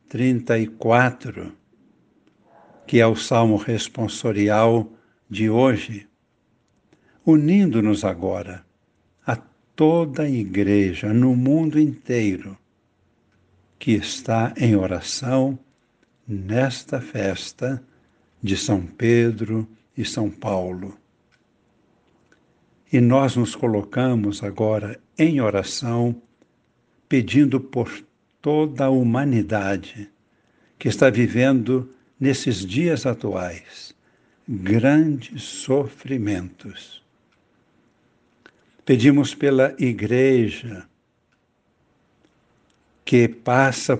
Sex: male